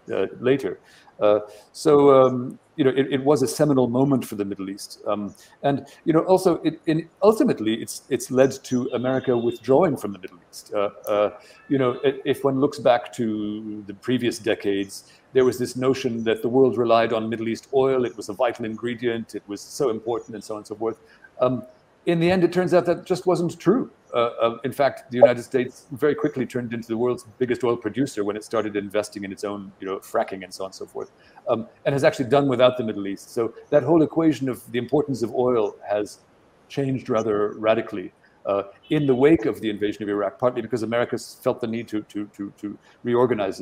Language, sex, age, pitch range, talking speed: English, male, 50-69, 110-140 Hz, 220 wpm